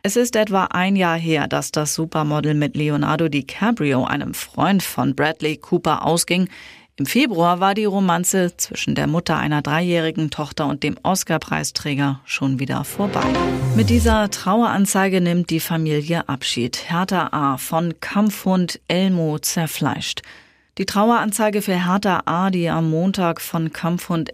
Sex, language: female, German